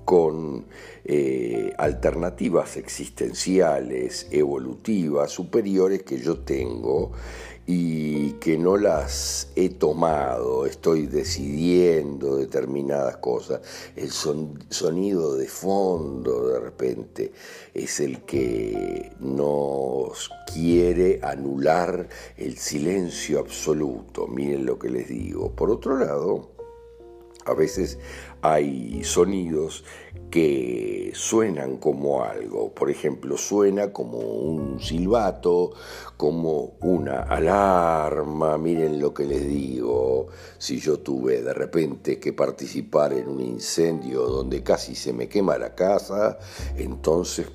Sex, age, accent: male, 60-79, Argentinian